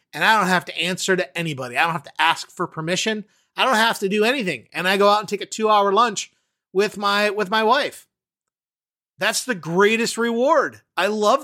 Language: English